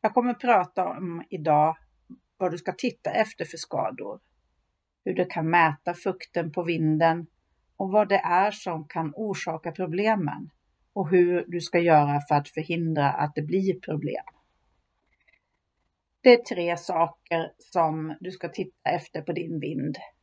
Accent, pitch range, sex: native, 155-190 Hz, female